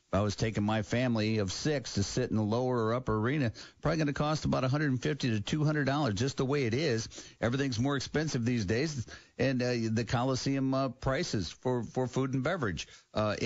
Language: English